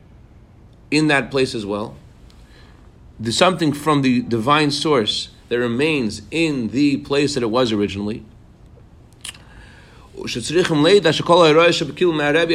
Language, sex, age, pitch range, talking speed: English, male, 50-69, 115-150 Hz, 100 wpm